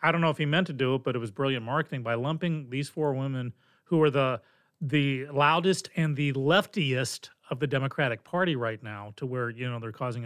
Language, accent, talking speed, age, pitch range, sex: English, American, 230 wpm, 40-59, 135-175 Hz, male